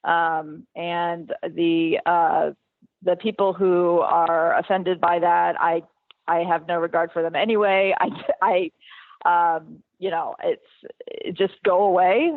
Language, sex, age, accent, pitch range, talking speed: English, female, 30-49, American, 180-225 Hz, 135 wpm